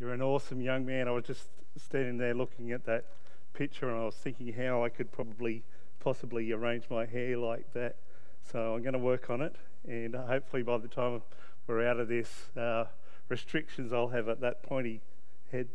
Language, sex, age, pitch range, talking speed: English, male, 40-59, 110-130 Hz, 200 wpm